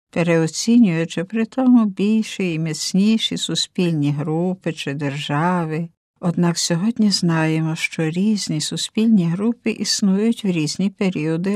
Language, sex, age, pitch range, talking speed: Ukrainian, female, 60-79, 170-220 Hz, 110 wpm